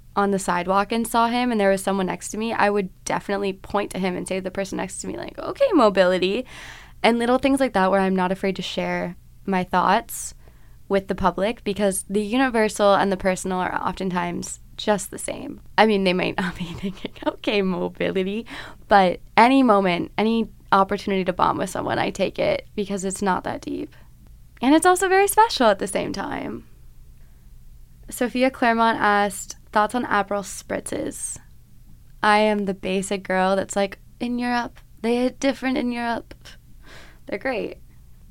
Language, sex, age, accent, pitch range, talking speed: English, female, 20-39, American, 190-230 Hz, 180 wpm